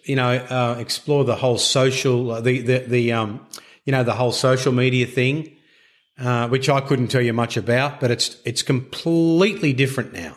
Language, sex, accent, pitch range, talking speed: English, male, Australian, 125-150 Hz, 185 wpm